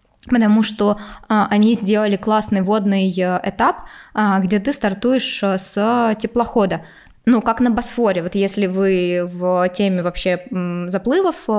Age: 20-39